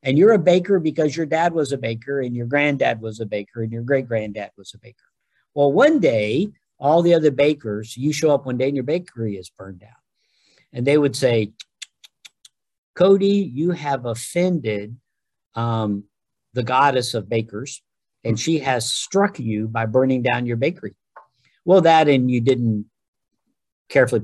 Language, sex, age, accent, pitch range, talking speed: English, male, 50-69, American, 115-170 Hz, 170 wpm